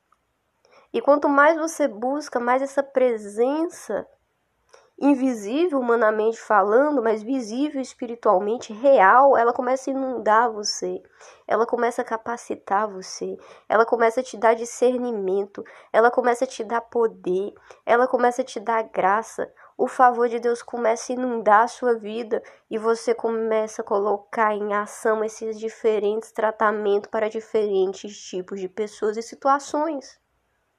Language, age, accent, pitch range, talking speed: Portuguese, 10-29, Brazilian, 215-260 Hz, 135 wpm